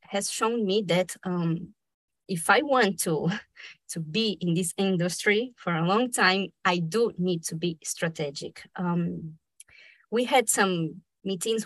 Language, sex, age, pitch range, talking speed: English, female, 20-39, 170-215 Hz, 150 wpm